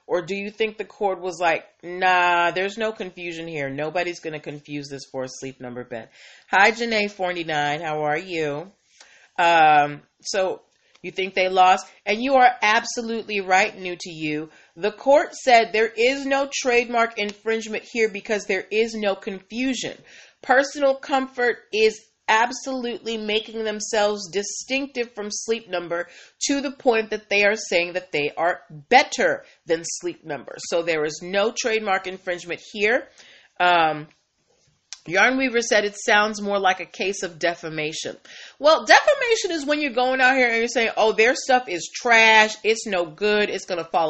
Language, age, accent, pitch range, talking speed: English, 40-59, American, 175-240 Hz, 165 wpm